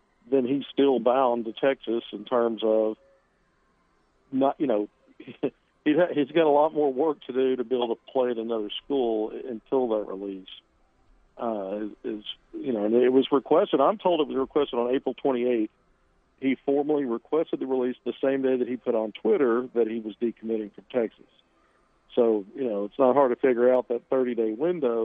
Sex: male